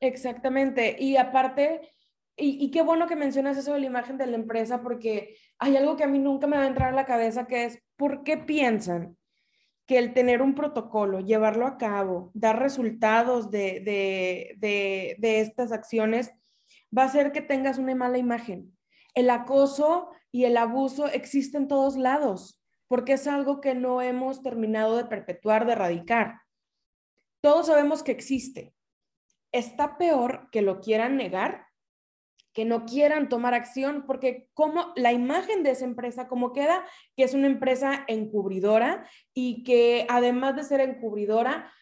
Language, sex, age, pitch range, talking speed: Spanish, female, 20-39, 225-275 Hz, 160 wpm